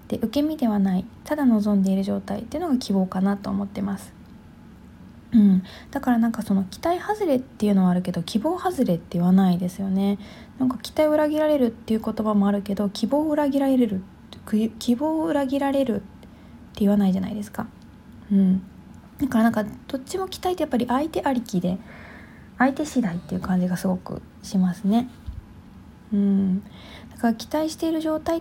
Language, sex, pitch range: Japanese, female, 195-265 Hz